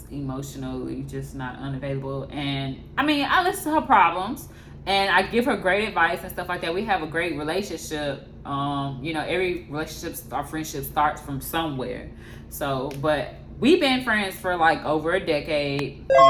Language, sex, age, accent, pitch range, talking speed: English, female, 10-29, American, 140-205 Hz, 175 wpm